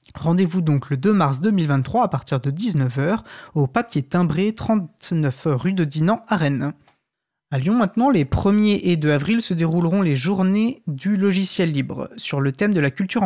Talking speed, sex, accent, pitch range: 180 wpm, male, French, 145-195 Hz